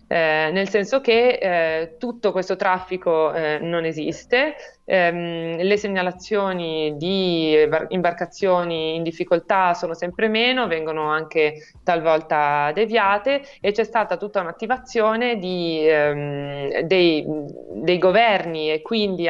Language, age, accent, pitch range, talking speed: Italian, 20-39, native, 155-190 Hz, 110 wpm